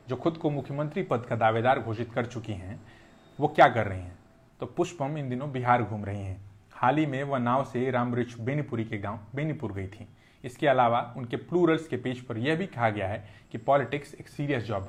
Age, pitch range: 30-49, 110-145 Hz